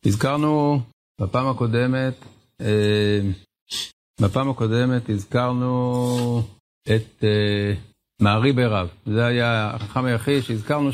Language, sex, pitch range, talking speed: Hebrew, male, 105-130 Hz, 90 wpm